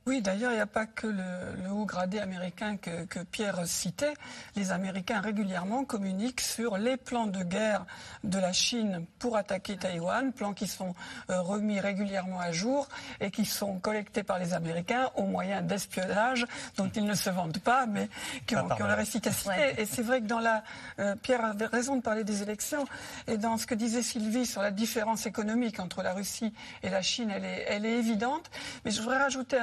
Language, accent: French, French